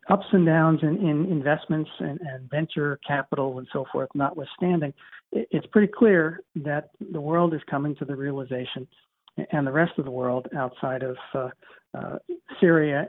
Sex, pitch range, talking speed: male, 135-160 Hz, 165 wpm